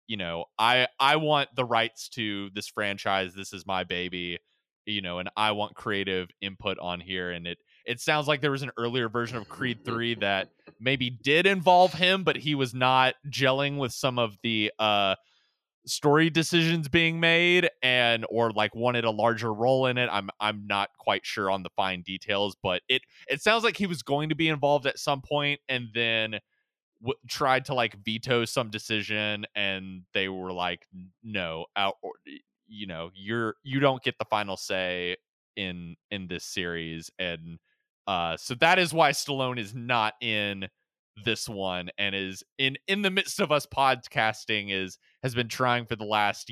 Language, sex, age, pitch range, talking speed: English, male, 20-39, 95-130 Hz, 185 wpm